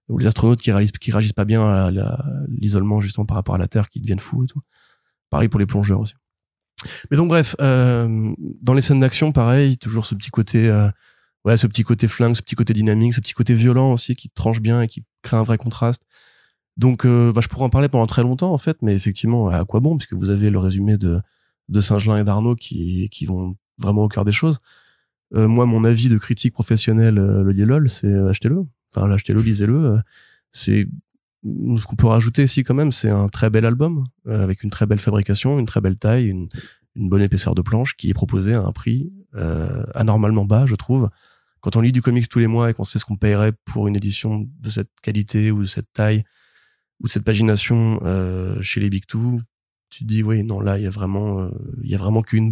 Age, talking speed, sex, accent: 20-39, 225 wpm, male, French